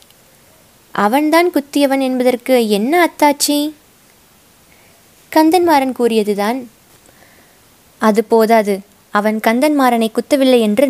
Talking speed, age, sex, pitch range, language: 65 wpm, 20-39, female, 215-265 Hz, Tamil